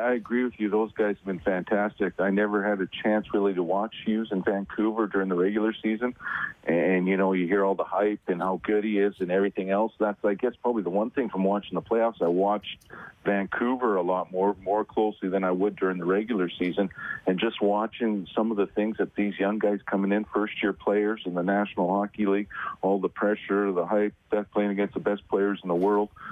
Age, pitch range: 40-59, 95-105 Hz